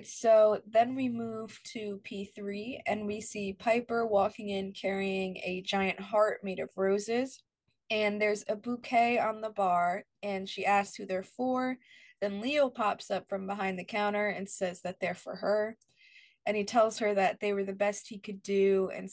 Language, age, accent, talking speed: English, 20-39, American, 185 wpm